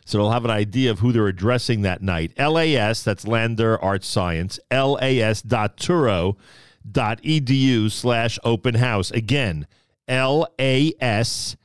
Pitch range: 115-150 Hz